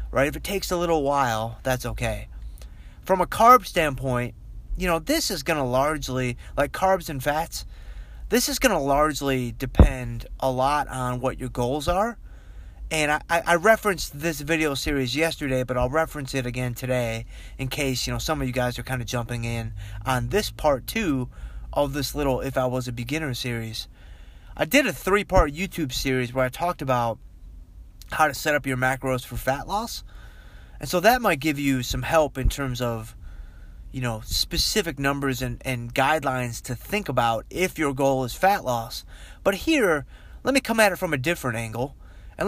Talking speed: 190 wpm